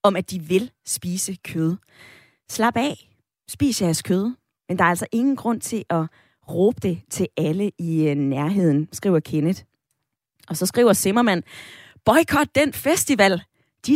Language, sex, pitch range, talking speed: Danish, female, 165-230 Hz, 150 wpm